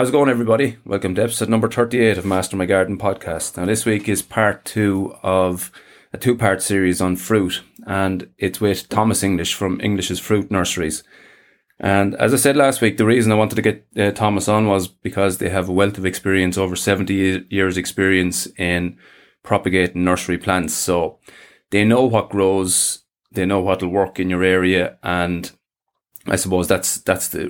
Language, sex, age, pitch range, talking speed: English, male, 30-49, 90-105 Hz, 185 wpm